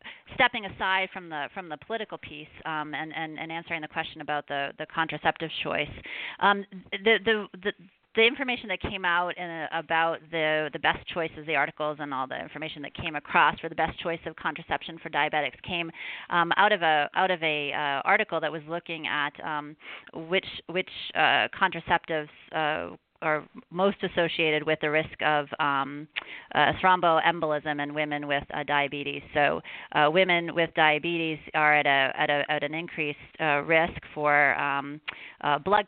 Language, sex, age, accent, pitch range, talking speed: English, female, 30-49, American, 150-180 Hz, 180 wpm